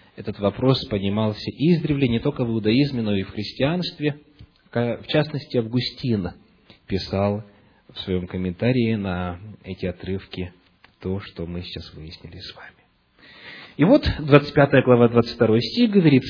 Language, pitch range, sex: Russian, 110-160 Hz, male